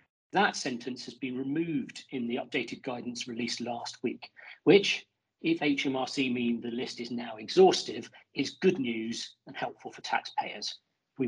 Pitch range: 120-150 Hz